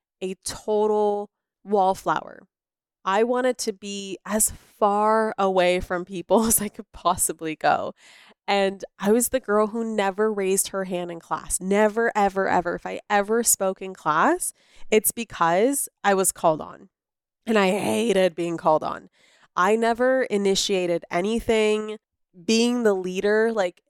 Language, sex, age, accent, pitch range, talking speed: English, female, 20-39, American, 185-220 Hz, 145 wpm